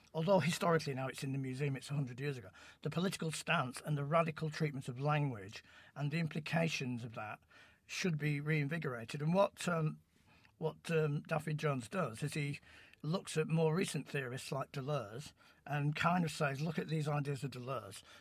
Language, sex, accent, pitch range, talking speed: English, male, British, 130-160 Hz, 180 wpm